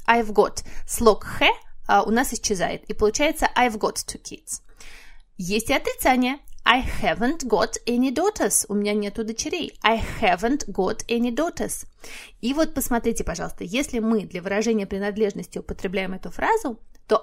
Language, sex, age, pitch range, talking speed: Russian, female, 20-39, 205-265 Hz, 145 wpm